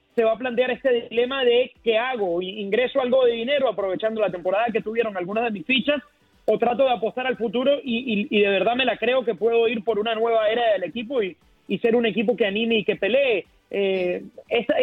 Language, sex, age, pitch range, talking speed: Spanish, male, 30-49, 215-260 Hz, 230 wpm